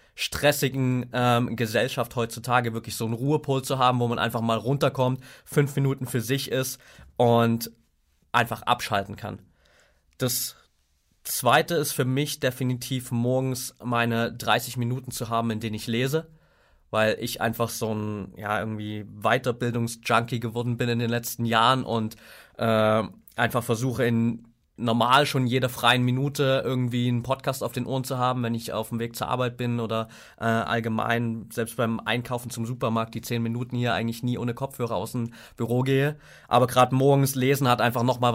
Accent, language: German, German